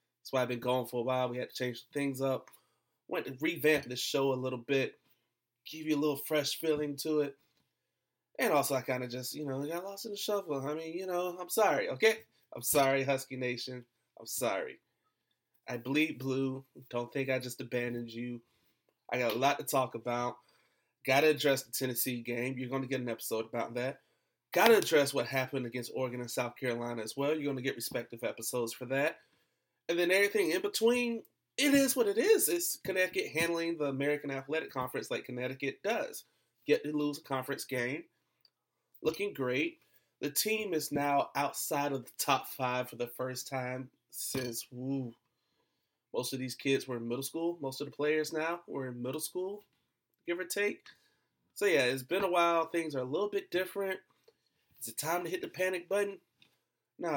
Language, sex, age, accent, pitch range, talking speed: English, male, 30-49, American, 125-165 Hz, 200 wpm